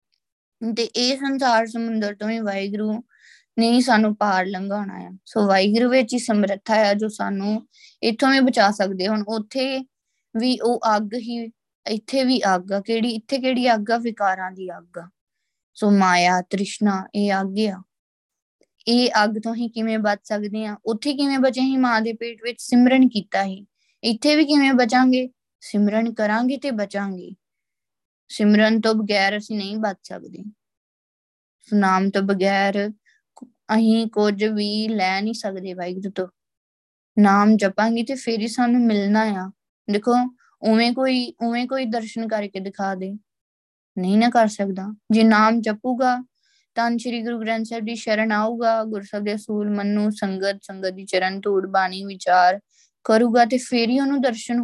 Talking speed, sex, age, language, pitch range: 145 wpm, female, 20-39, Punjabi, 200-235 Hz